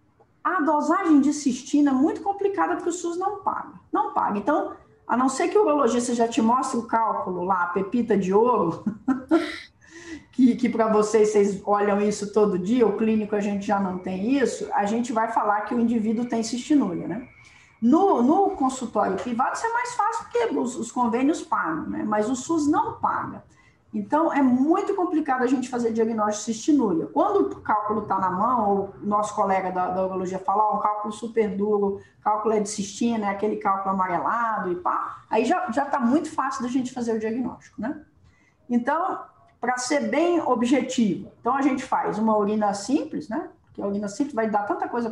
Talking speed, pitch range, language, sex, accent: 200 wpm, 205-280 Hz, Portuguese, female, Brazilian